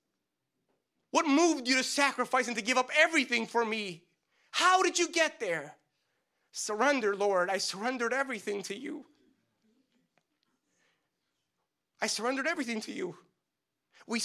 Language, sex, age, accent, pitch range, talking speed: English, male, 30-49, American, 220-295 Hz, 125 wpm